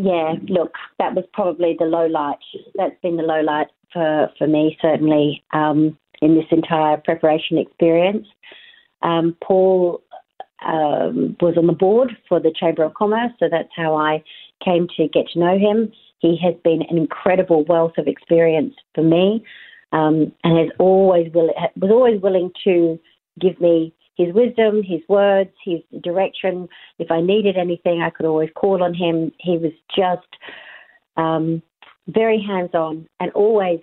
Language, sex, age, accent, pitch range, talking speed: English, female, 50-69, Australian, 165-195 Hz, 160 wpm